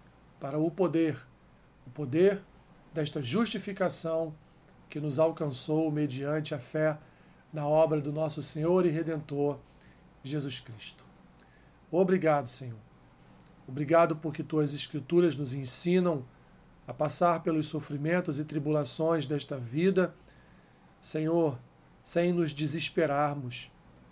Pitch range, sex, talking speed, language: 145-170 Hz, male, 105 wpm, Portuguese